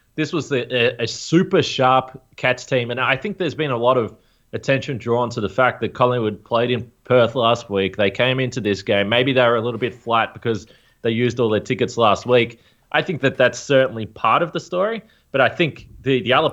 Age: 20-39